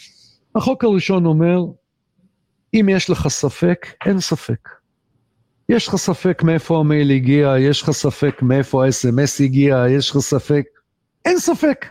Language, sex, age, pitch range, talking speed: English, male, 50-69, 135-200 Hz, 130 wpm